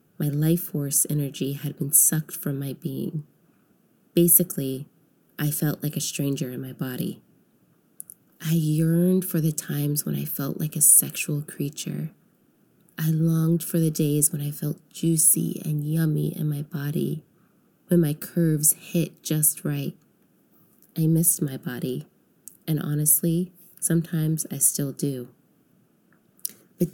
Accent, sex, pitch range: American, female, 150-175 Hz